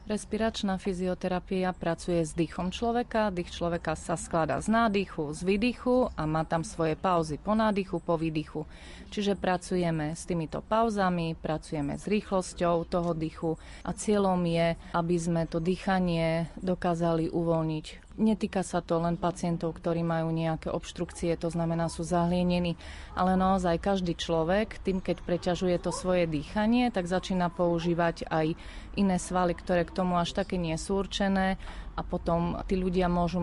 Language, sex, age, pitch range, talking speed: Slovak, female, 30-49, 165-185 Hz, 150 wpm